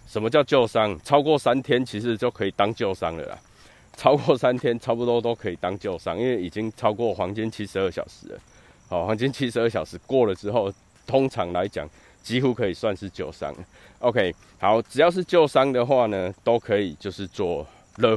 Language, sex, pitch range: Chinese, male, 95-120 Hz